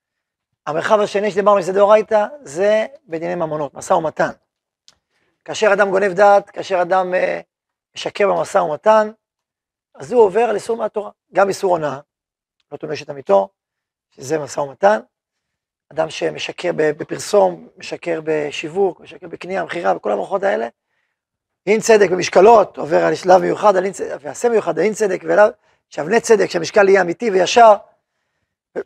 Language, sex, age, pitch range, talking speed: Hebrew, male, 40-59, 160-215 Hz, 135 wpm